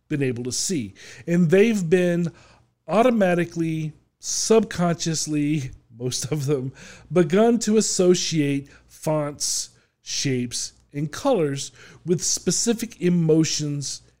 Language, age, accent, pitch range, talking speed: English, 40-59, American, 140-195 Hz, 95 wpm